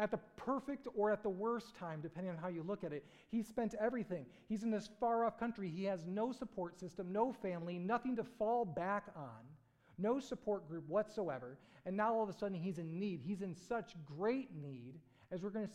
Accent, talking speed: American, 215 wpm